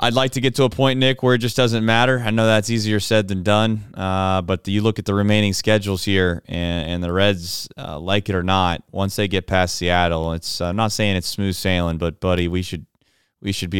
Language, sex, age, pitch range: English, male, 30-49, 85-100 Hz